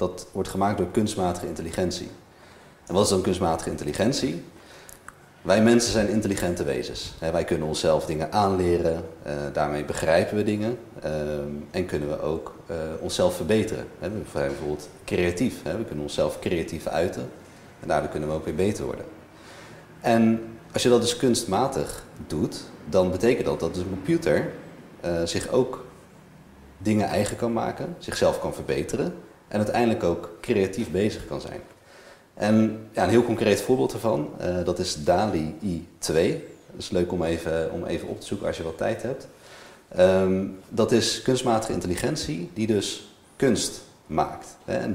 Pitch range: 80-110 Hz